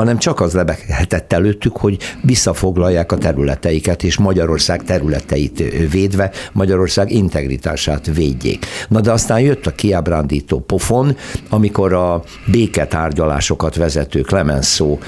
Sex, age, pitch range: male, 60-79, 80-105 Hz